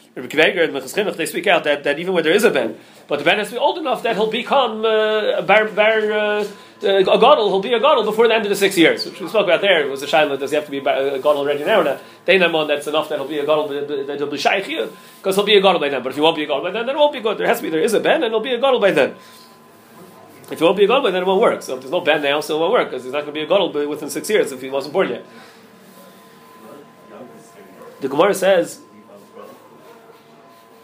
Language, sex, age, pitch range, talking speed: English, male, 30-49, 145-215 Hz, 280 wpm